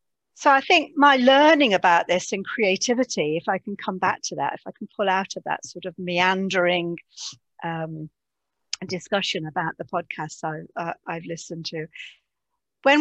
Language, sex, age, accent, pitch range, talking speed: English, female, 50-69, British, 170-220 Hz, 170 wpm